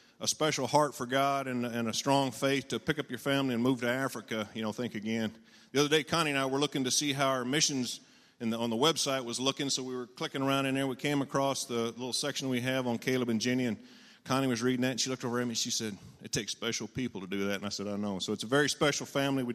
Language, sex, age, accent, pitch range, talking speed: English, male, 40-59, American, 120-145 Hz, 290 wpm